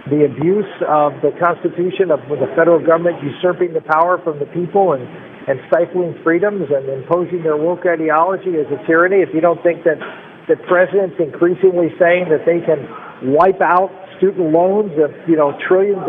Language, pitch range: English, 160-190 Hz